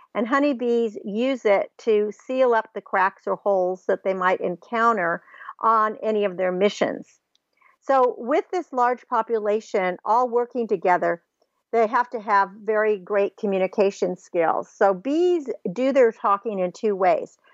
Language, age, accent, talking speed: English, 50-69, American, 150 wpm